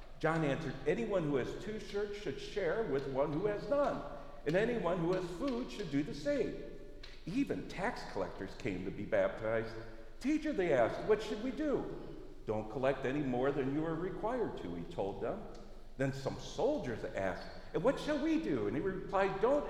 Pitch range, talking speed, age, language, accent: 125-210 Hz, 190 wpm, 50-69, English, American